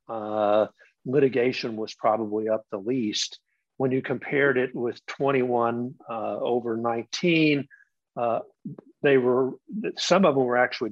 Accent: American